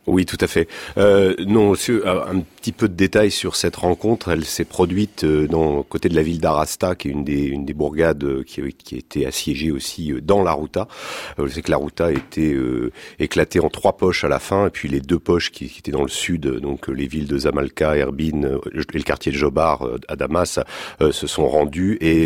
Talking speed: 245 wpm